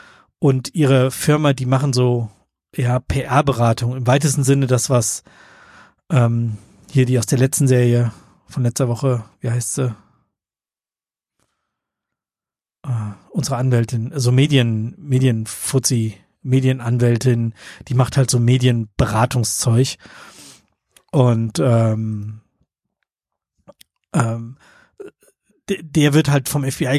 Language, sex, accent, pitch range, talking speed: German, male, German, 120-140 Hz, 105 wpm